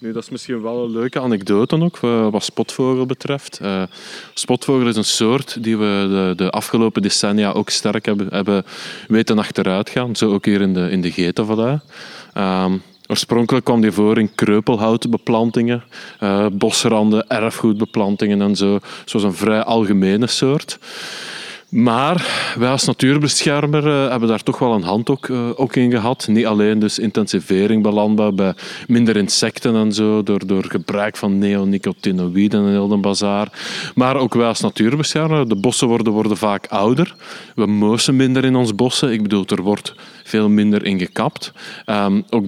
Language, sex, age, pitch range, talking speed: Dutch, male, 20-39, 100-120 Hz, 160 wpm